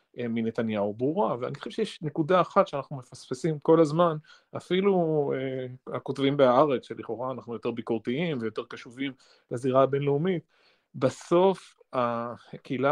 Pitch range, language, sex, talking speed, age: 120-155 Hz, Hebrew, male, 115 wpm, 30-49